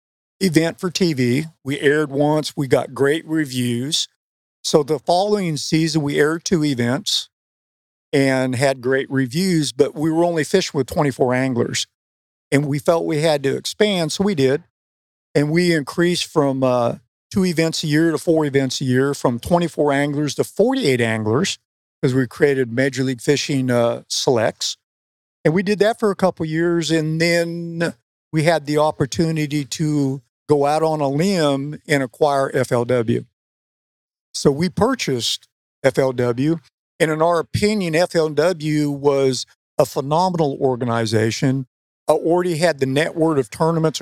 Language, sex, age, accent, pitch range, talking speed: English, male, 50-69, American, 135-165 Hz, 150 wpm